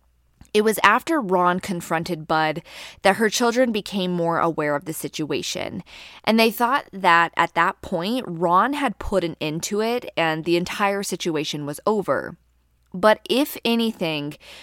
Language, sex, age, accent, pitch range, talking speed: English, female, 20-39, American, 160-215 Hz, 155 wpm